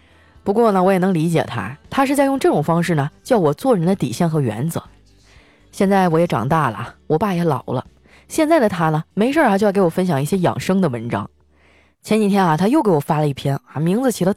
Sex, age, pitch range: female, 20-39, 155-220 Hz